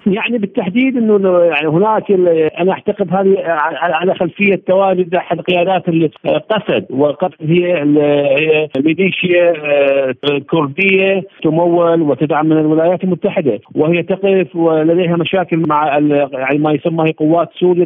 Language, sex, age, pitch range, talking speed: Arabic, male, 50-69, 160-190 Hz, 110 wpm